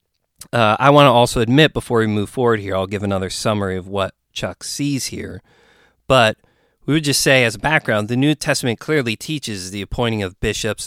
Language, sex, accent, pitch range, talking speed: English, male, American, 95-125 Hz, 205 wpm